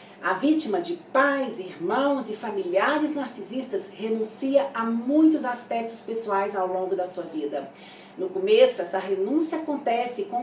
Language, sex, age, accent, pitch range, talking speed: Portuguese, female, 40-59, Brazilian, 225-300 Hz, 140 wpm